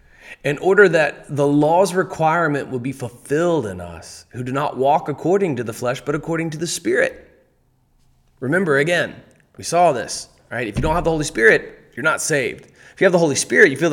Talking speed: 205 wpm